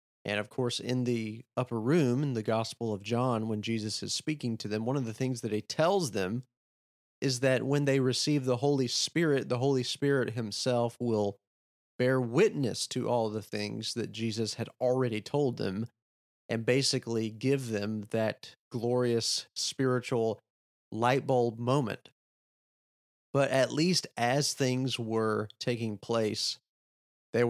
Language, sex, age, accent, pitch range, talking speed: English, male, 30-49, American, 105-125 Hz, 155 wpm